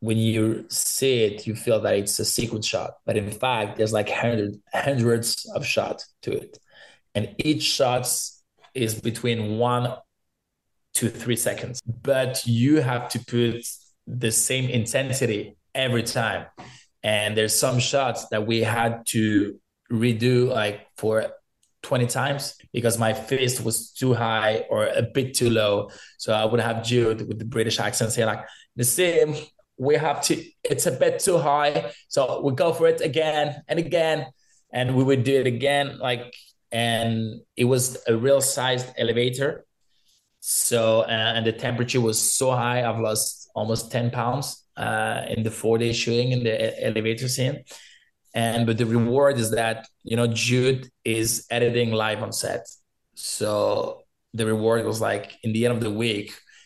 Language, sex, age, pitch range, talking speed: English, male, 20-39, 110-130 Hz, 165 wpm